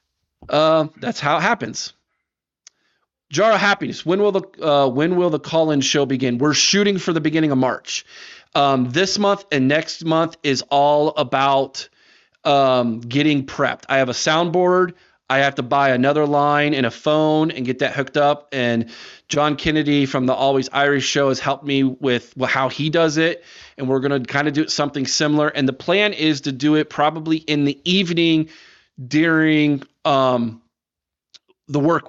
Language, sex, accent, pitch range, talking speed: English, male, American, 130-155 Hz, 180 wpm